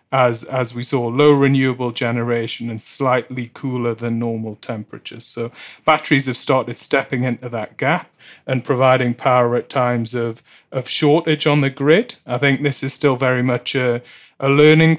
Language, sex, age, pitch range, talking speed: English, male, 30-49, 120-140 Hz, 170 wpm